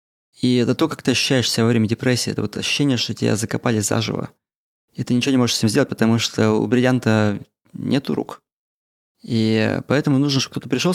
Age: 20-39